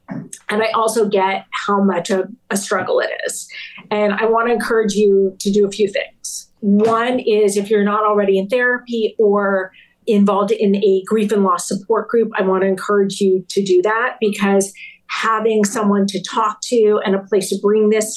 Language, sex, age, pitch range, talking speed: English, female, 40-59, 200-225 Hz, 195 wpm